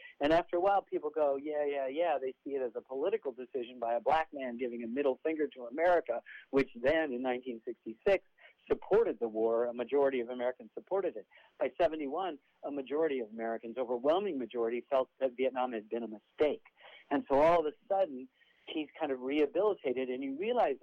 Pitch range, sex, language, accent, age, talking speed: 125-170 Hz, male, English, American, 60-79, 195 wpm